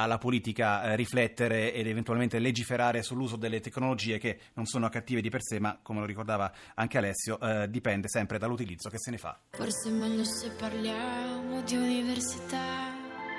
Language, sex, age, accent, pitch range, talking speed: Italian, male, 30-49, native, 110-140 Hz, 165 wpm